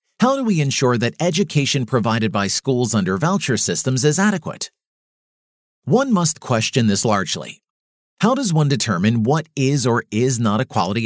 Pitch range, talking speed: 110-165 Hz, 165 wpm